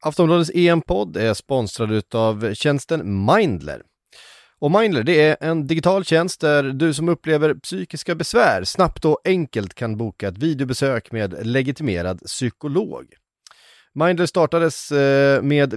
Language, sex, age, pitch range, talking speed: Swedish, male, 30-49, 115-165 Hz, 120 wpm